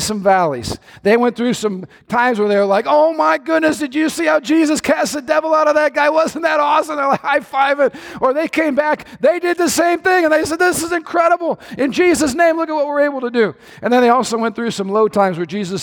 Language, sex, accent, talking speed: English, male, American, 260 wpm